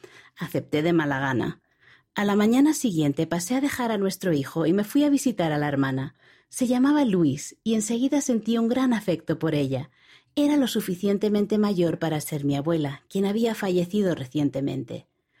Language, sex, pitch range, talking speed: Spanish, female, 155-220 Hz, 175 wpm